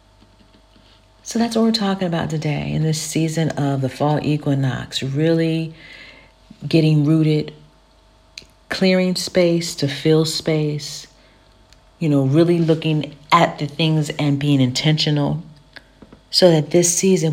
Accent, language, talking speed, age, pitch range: American, English, 125 wpm, 40-59, 135-170 Hz